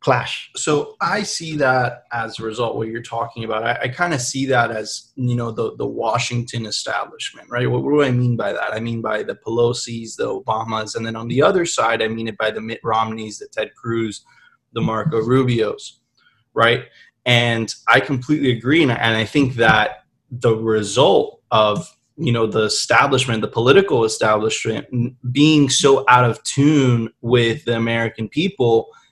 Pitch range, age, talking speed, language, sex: 115-140 Hz, 20-39, 180 wpm, English, male